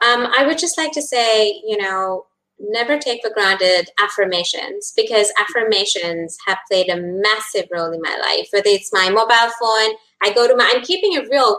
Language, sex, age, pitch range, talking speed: English, female, 20-39, 235-345 Hz, 190 wpm